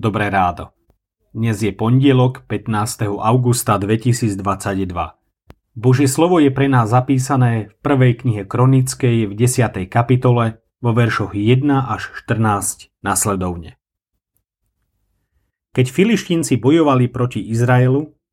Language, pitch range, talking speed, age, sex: Slovak, 105-135 Hz, 105 wpm, 30-49, male